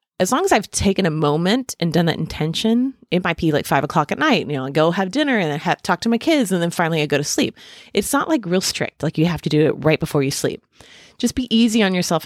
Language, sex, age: English, female, 30-49